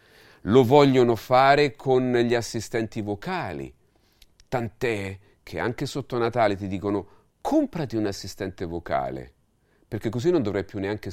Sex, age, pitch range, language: male, 40-59, 90-120 Hz, Italian